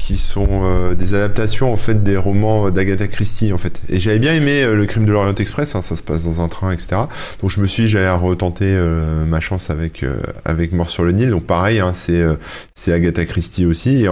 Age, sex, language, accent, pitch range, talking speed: 20-39, male, French, French, 85-105 Hz, 250 wpm